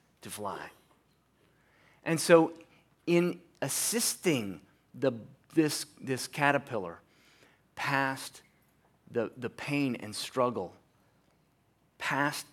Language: English